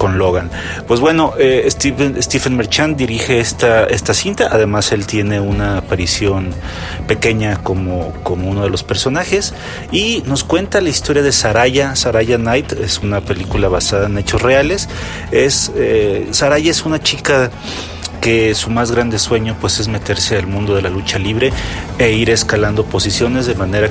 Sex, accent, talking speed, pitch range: male, Mexican, 165 wpm, 100-120 Hz